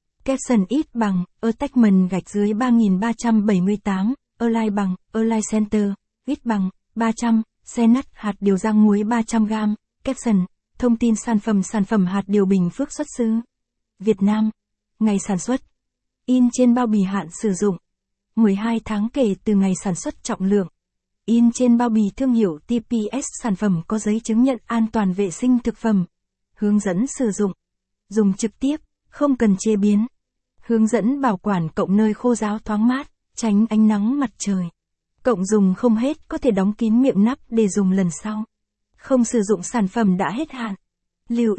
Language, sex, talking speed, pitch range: Vietnamese, female, 185 wpm, 200-235 Hz